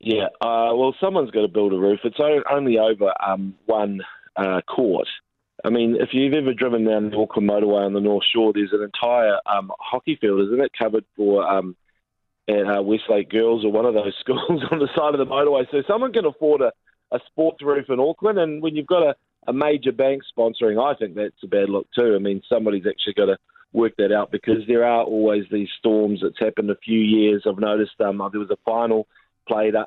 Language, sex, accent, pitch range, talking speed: English, male, Australian, 105-130 Hz, 220 wpm